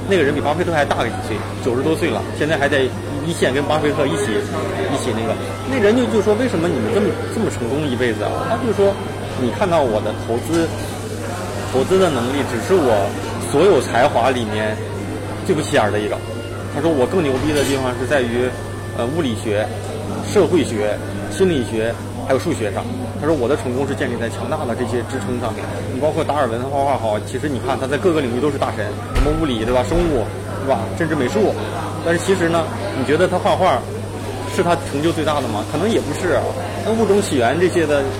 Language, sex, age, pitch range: Chinese, male, 20-39, 105-130 Hz